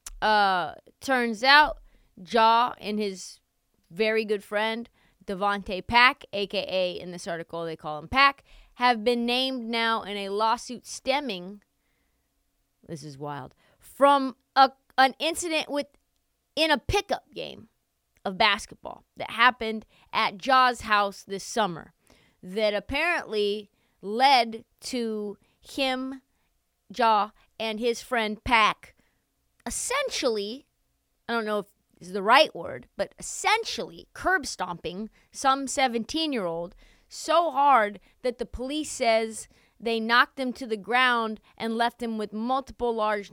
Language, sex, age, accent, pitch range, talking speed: English, female, 30-49, American, 190-255 Hz, 125 wpm